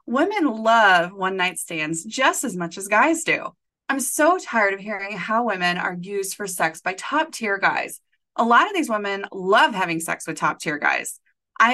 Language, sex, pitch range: English, female, 175-240 Hz